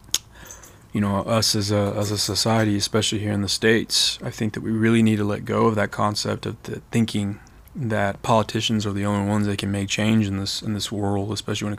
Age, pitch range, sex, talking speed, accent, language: 20-39, 100-110 Hz, male, 235 wpm, American, English